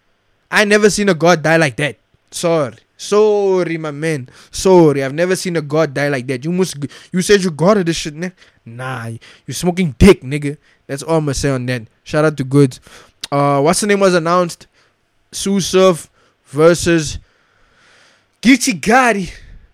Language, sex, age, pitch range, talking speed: English, male, 20-39, 140-190 Hz, 175 wpm